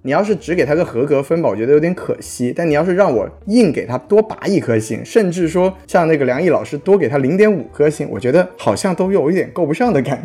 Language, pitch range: Chinese, 115-170 Hz